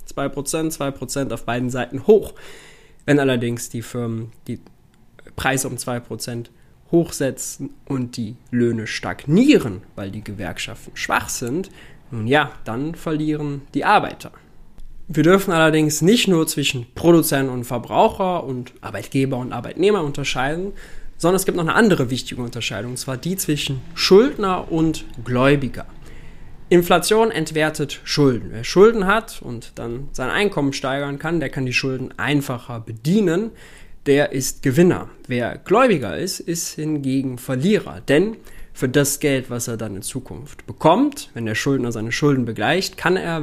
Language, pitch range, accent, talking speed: German, 125-165 Hz, German, 140 wpm